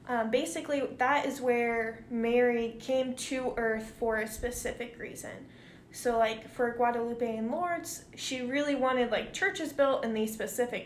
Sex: female